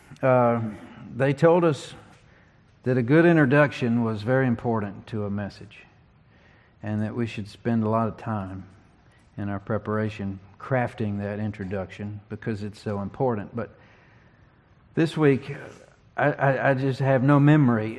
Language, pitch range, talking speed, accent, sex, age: English, 105-125 Hz, 145 wpm, American, male, 50-69